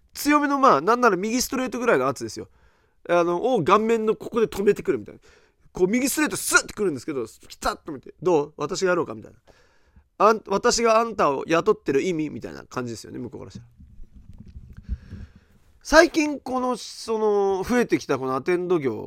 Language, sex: Japanese, male